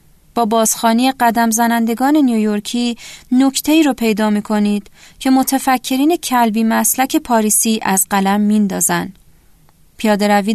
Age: 30-49